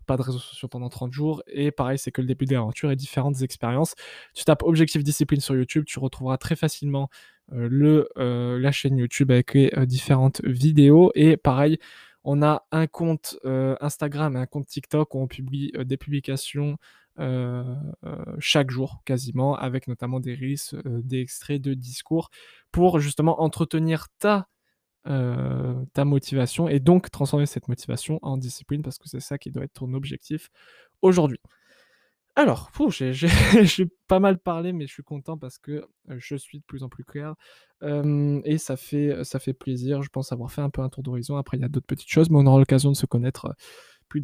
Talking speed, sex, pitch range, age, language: 195 wpm, male, 130-155 Hz, 20-39, French